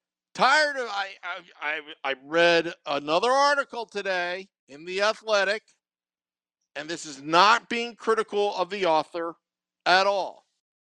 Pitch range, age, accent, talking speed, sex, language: 155-210 Hz, 50-69, American, 125 wpm, male, English